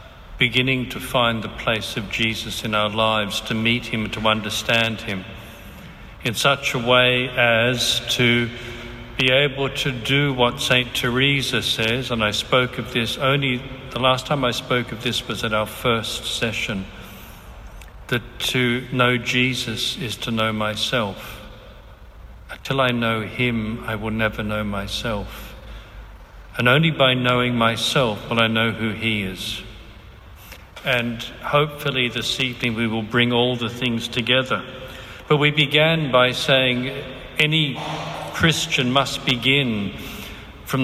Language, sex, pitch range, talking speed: English, male, 110-125 Hz, 145 wpm